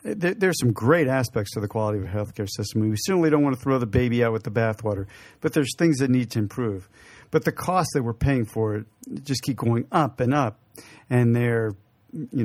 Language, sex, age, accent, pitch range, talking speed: English, male, 50-69, American, 110-140 Hz, 245 wpm